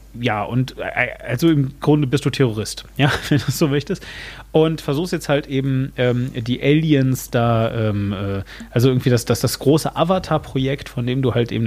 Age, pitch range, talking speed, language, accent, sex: 30-49, 125-155 Hz, 190 wpm, German, German, male